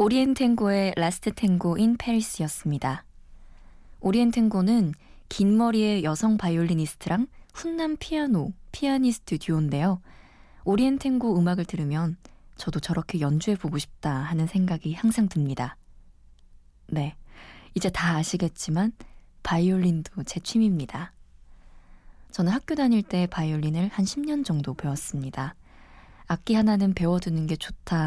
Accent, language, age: native, Korean, 20-39